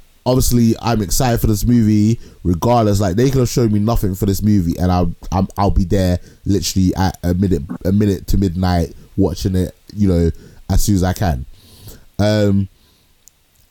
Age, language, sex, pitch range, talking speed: 20-39, English, male, 85-105 Hz, 175 wpm